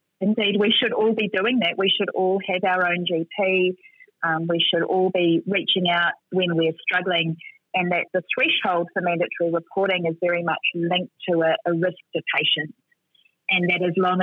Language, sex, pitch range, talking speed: English, female, 165-195 Hz, 190 wpm